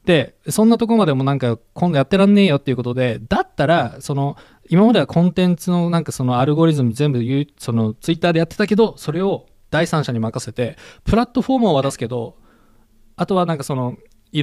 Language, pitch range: Japanese, 120-170 Hz